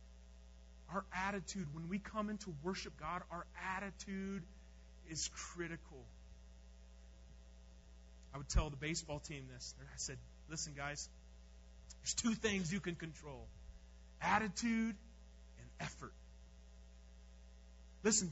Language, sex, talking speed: English, male, 110 wpm